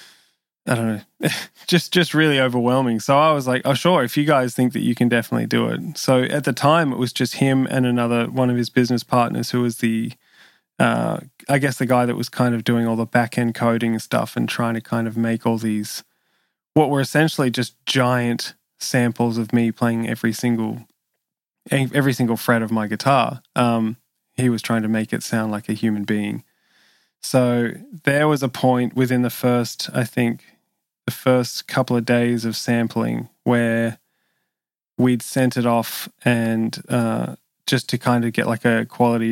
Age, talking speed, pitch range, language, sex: 20-39, 190 wpm, 115-130 Hz, English, male